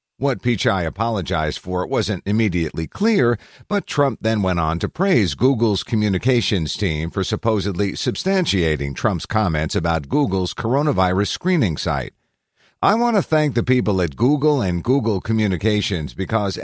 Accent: American